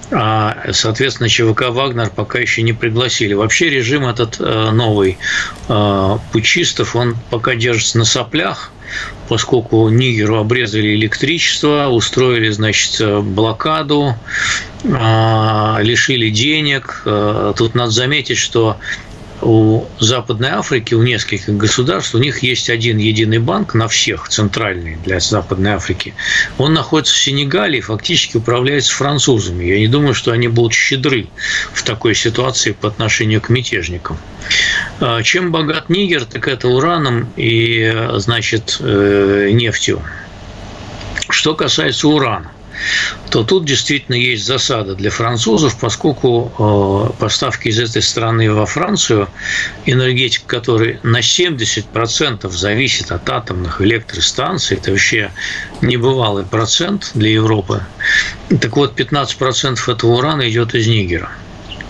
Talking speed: 115 wpm